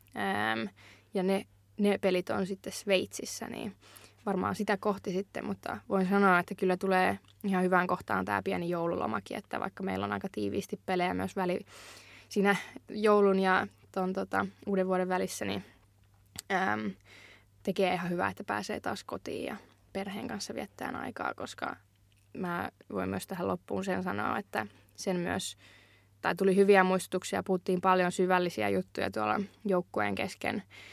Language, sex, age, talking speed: Finnish, female, 20-39, 150 wpm